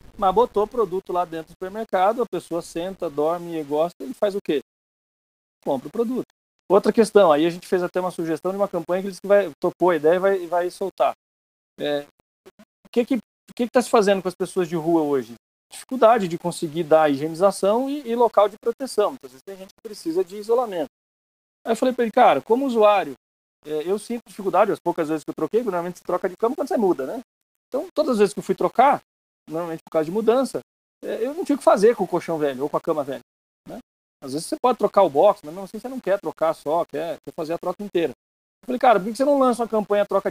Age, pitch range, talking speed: 40-59, 160-220 Hz, 245 wpm